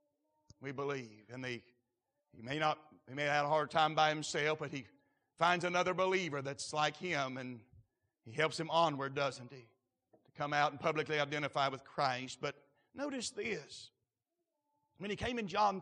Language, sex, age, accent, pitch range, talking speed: English, male, 50-69, American, 130-205 Hz, 165 wpm